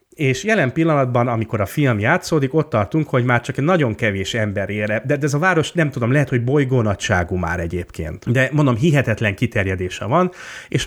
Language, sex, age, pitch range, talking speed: Hungarian, male, 30-49, 100-130 Hz, 195 wpm